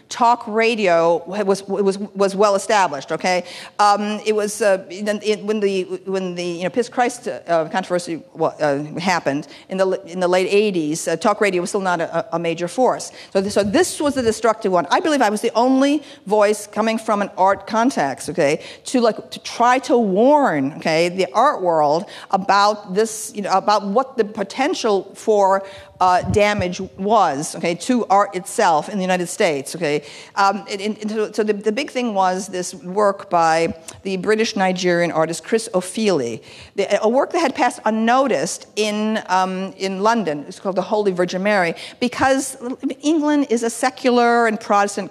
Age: 50-69